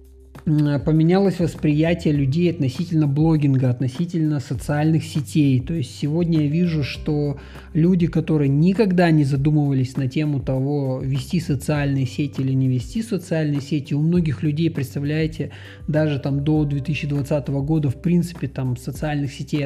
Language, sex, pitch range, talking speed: Russian, male, 140-170 Hz, 135 wpm